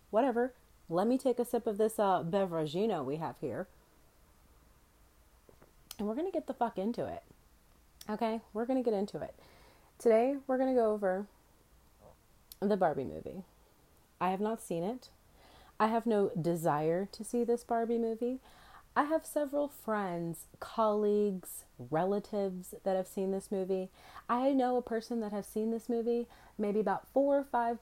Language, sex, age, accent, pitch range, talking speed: English, female, 30-49, American, 155-235 Hz, 165 wpm